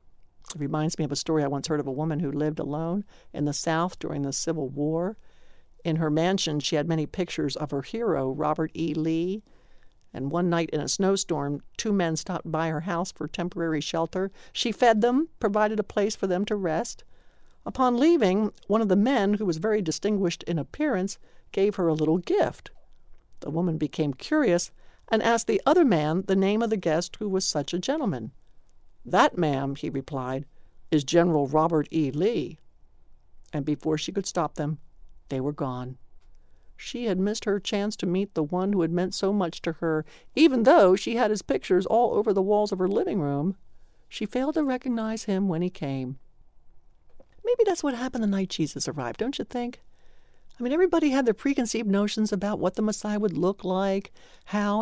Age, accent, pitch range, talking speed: 60-79, American, 155-210 Hz, 195 wpm